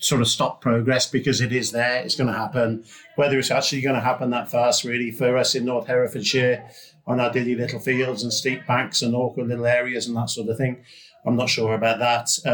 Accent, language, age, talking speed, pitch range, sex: British, English, 50-69, 230 wpm, 115-130 Hz, male